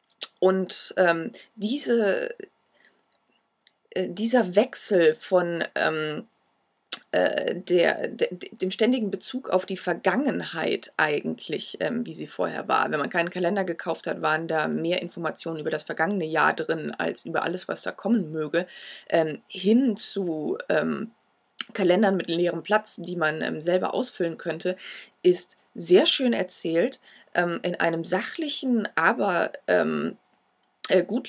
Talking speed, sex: 130 wpm, female